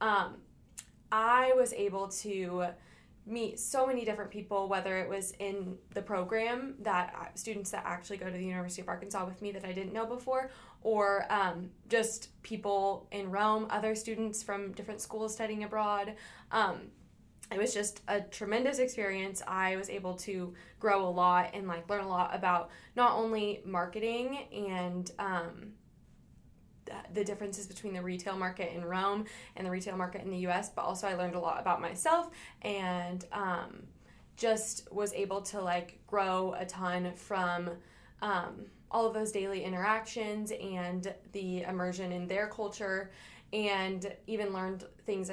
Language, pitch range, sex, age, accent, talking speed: English, 180-210 Hz, female, 20-39, American, 160 wpm